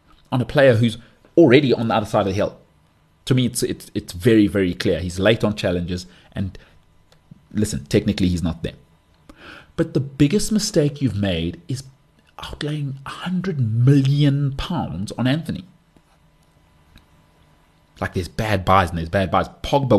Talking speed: 155 wpm